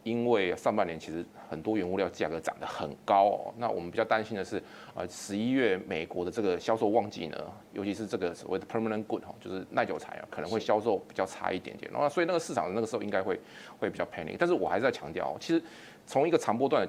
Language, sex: Chinese, male